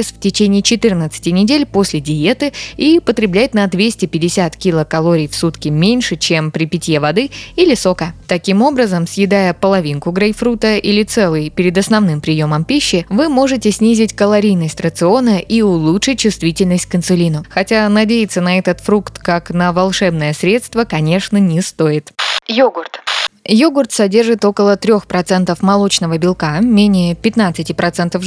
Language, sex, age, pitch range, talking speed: Russian, female, 20-39, 175-230 Hz, 130 wpm